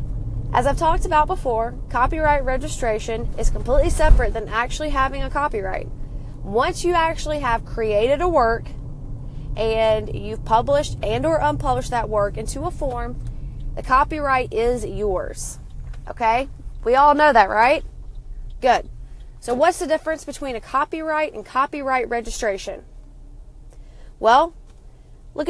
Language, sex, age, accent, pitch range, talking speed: English, female, 20-39, American, 215-300 Hz, 130 wpm